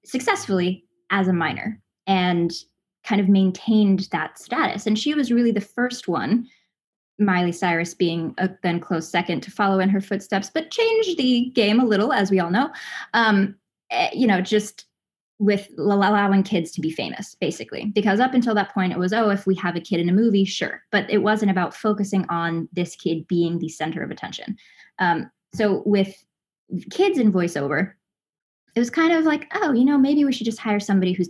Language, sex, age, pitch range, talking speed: English, female, 10-29, 180-225 Hz, 195 wpm